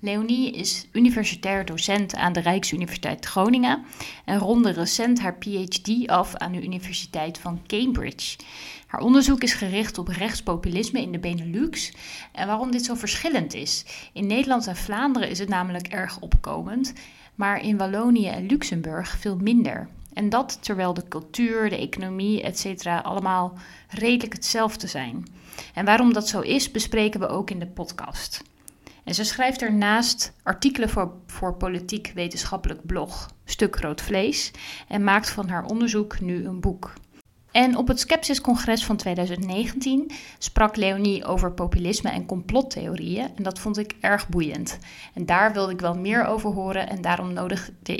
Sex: female